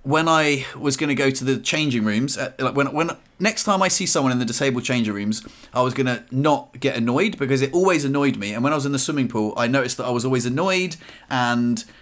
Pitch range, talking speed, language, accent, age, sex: 115-155 Hz, 255 wpm, English, British, 30-49, male